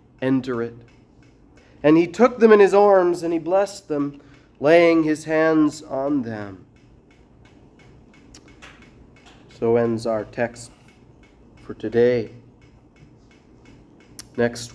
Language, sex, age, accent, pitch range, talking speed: English, male, 30-49, American, 115-140 Hz, 100 wpm